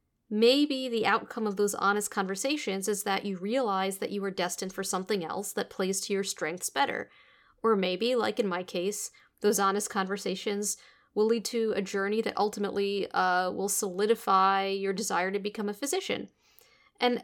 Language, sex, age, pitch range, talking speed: English, female, 40-59, 195-230 Hz, 175 wpm